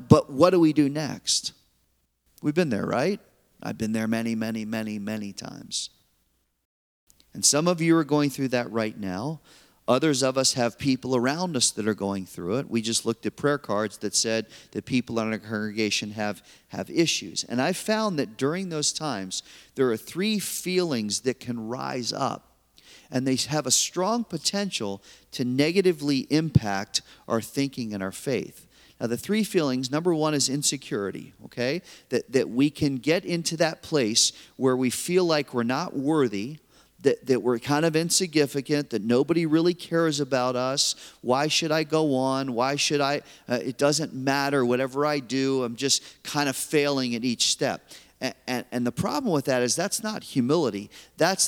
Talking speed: 180 wpm